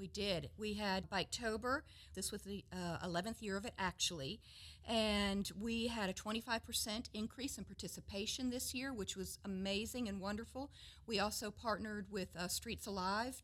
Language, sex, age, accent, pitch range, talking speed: English, female, 50-69, American, 185-230 Hz, 165 wpm